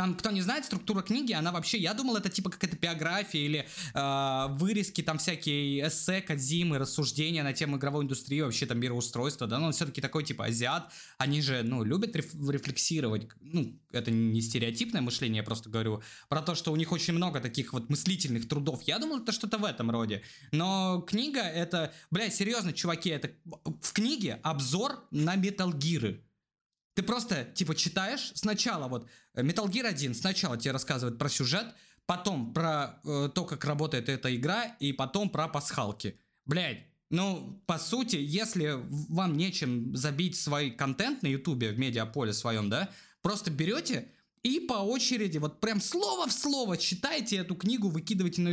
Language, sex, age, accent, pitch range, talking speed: Russian, male, 20-39, native, 135-190 Hz, 165 wpm